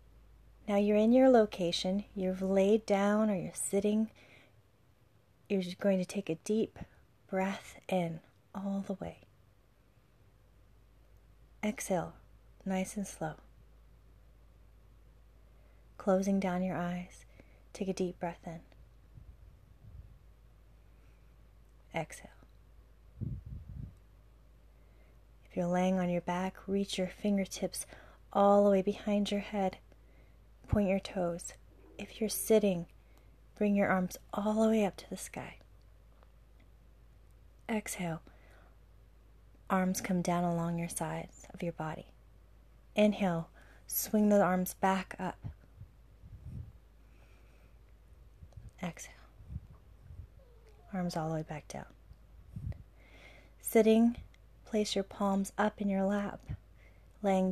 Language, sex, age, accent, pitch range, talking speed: English, female, 30-49, American, 155-200 Hz, 105 wpm